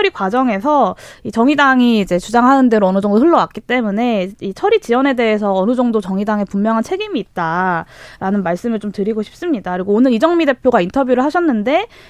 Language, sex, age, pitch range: Korean, female, 20-39, 205-295 Hz